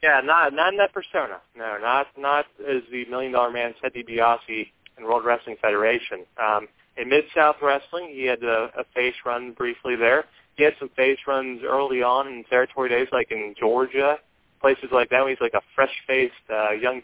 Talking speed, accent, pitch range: 195 wpm, American, 125-150 Hz